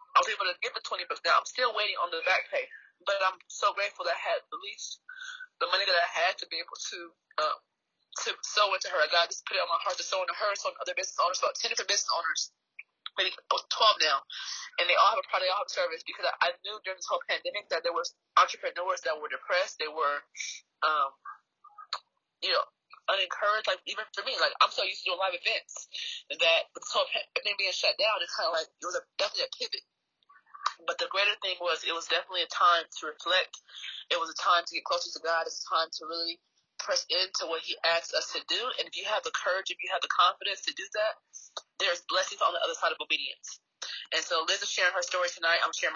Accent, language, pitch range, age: American, English, 170-280 Hz, 20-39